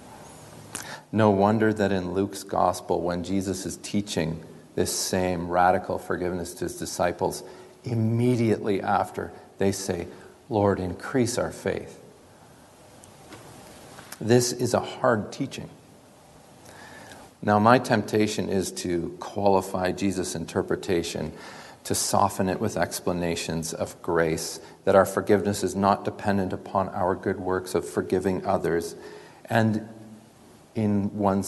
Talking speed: 115 wpm